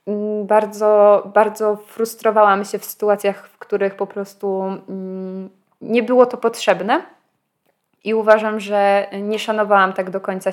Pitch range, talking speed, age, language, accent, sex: 190-215 Hz, 125 wpm, 20-39, Polish, native, female